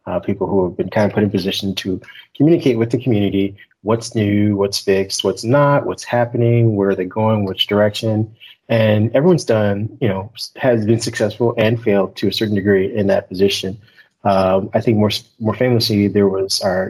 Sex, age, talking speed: male, 30-49, 195 wpm